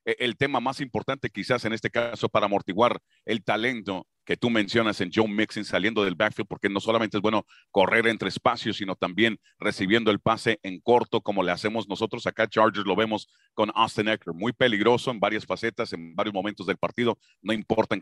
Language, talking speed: English, 200 wpm